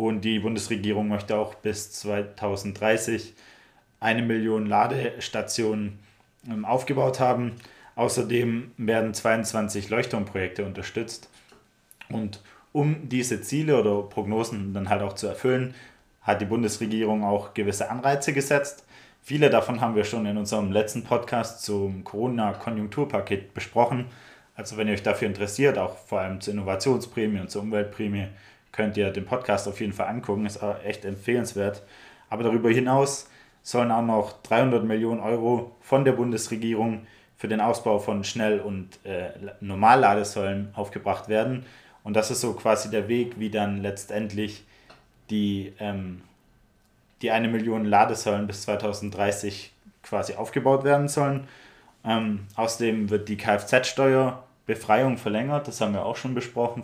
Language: German